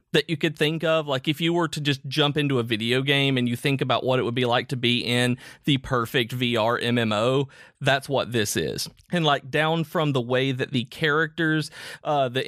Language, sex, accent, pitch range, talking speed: English, male, American, 120-145 Hz, 225 wpm